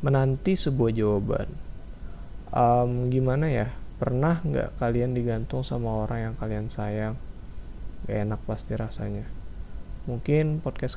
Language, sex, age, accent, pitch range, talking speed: Indonesian, male, 20-39, native, 100-120 Hz, 115 wpm